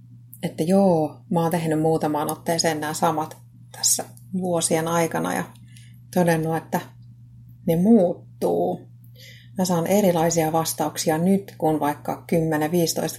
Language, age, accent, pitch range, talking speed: Finnish, 30-49, native, 150-180 Hz, 115 wpm